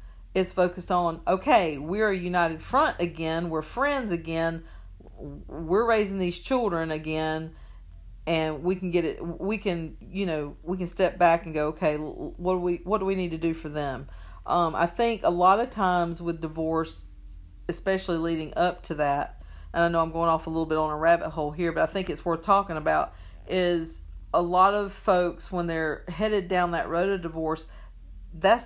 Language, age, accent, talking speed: English, 50-69, American, 195 wpm